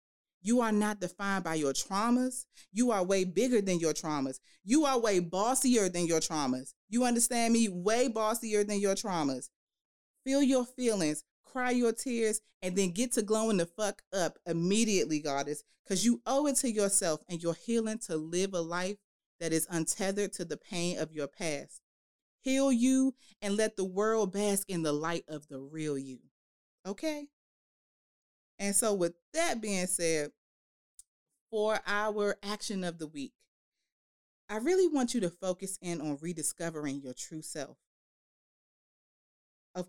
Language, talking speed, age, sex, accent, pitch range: English, 160 wpm, 30-49, female, American, 165-230 Hz